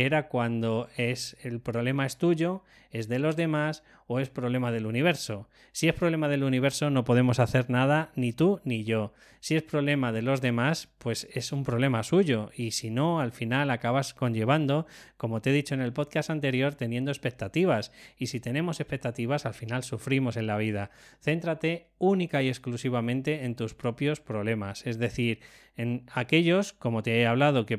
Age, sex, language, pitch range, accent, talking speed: 20-39, male, Spanish, 120-150 Hz, Spanish, 180 wpm